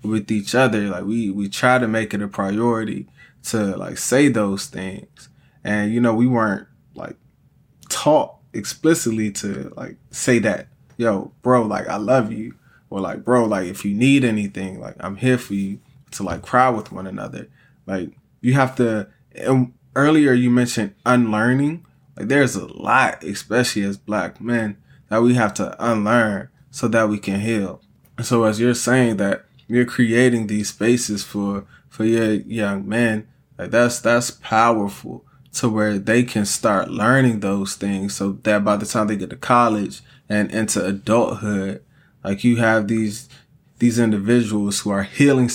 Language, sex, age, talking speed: English, male, 20-39, 170 wpm